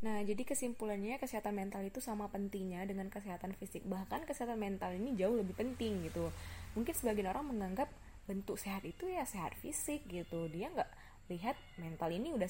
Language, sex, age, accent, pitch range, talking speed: Indonesian, female, 20-39, native, 180-240 Hz, 175 wpm